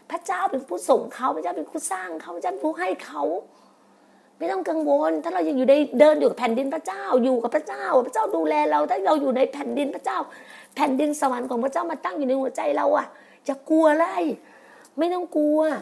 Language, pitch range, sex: Thai, 255-315 Hz, female